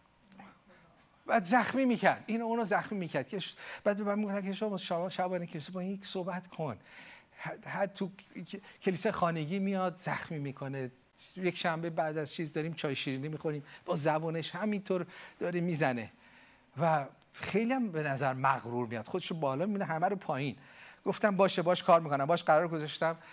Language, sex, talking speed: Persian, male, 160 wpm